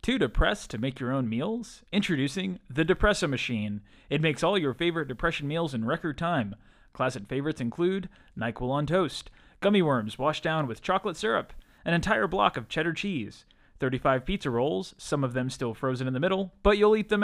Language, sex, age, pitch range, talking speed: English, male, 20-39, 130-195 Hz, 190 wpm